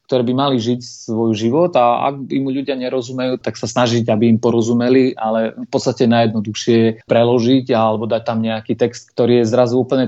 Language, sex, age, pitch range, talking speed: Slovak, male, 30-49, 115-125 Hz, 190 wpm